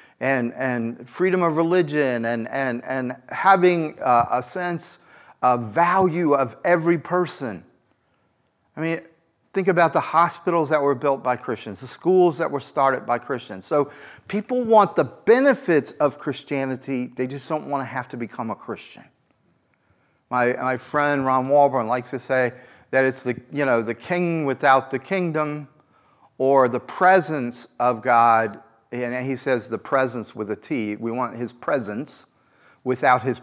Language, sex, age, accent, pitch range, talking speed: English, male, 40-59, American, 125-170 Hz, 160 wpm